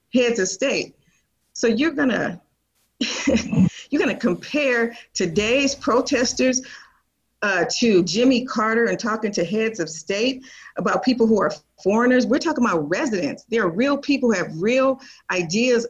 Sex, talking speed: female, 140 wpm